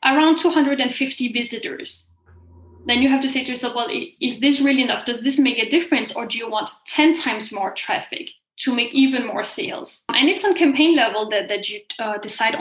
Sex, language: female, English